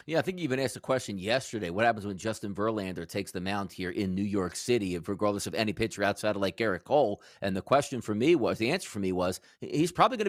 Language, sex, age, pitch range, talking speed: English, male, 40-59, 125-175 Hz, 260 wpm